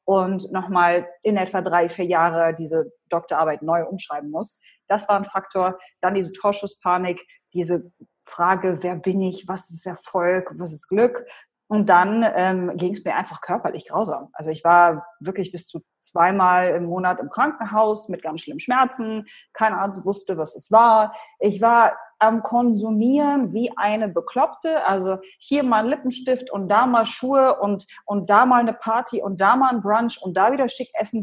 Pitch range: 185-265 Hz